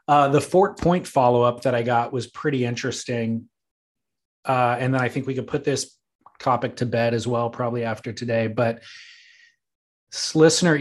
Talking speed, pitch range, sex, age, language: 165 wpm, 115-140 Hz, male, 30-49, English